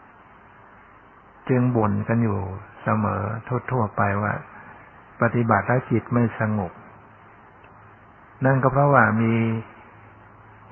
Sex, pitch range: male, 100-115 Hz